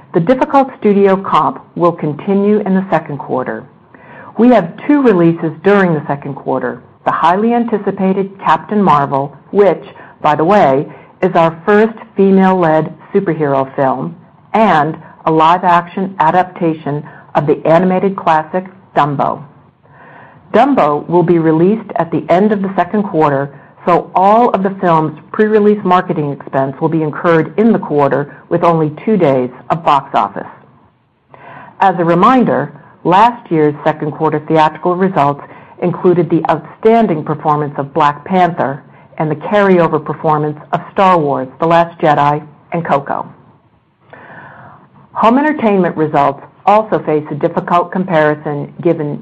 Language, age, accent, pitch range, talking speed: English, 50-69, American, 150-195 Hz, 135 wpm